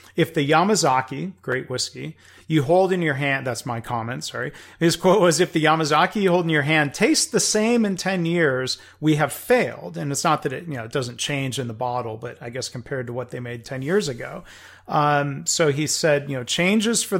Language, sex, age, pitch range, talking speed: English, male, 40-59, 120-145 Hz, 230 wpm